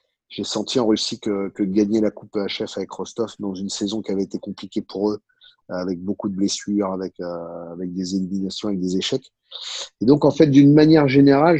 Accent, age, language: French, 30-49, French